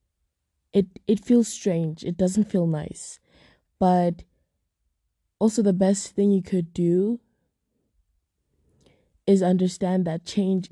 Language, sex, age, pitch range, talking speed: English, female, 20-39, 170-195 Hz, 110 wpm